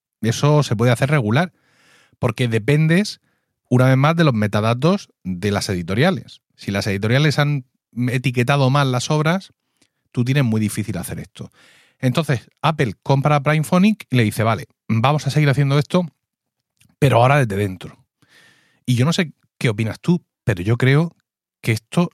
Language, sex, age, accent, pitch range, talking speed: Spanish, male, 30-49, Spanish, 120-165 Hz, 165 wpm